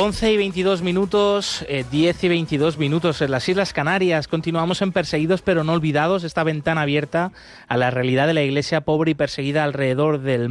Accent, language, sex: Spanish, Spanish, male